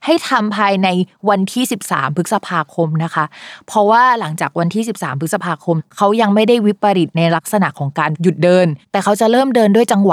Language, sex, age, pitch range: Thai, female, 20-39, 170-225 Hz